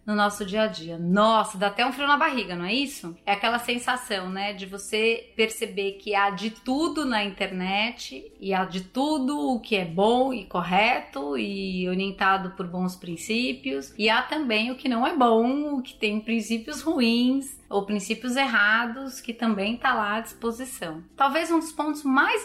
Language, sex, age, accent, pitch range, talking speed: Portuguese, female, 30-49, Brazilian, 200-265 Hz, 185 wpm